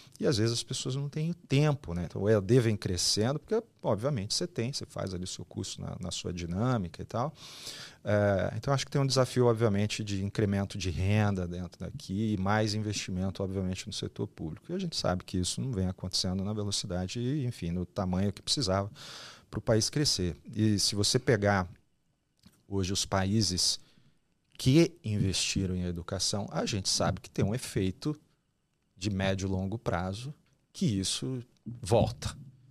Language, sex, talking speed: Portuguese, male, 180 wpm